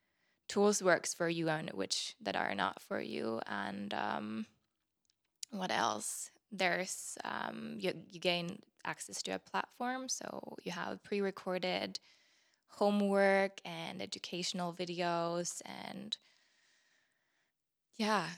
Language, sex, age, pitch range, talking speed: English, female, 20-39, 165-195 Hz, 110 wpm